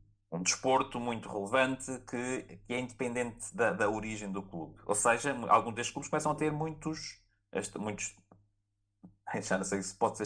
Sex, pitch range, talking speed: male, 105-135 Hz, 175 wpm